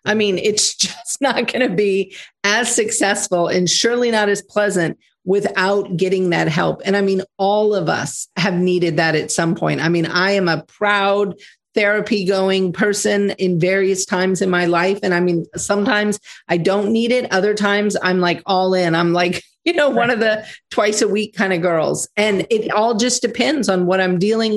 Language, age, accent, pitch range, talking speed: English, 40-59, American, 180-215 Hz, 200 wpm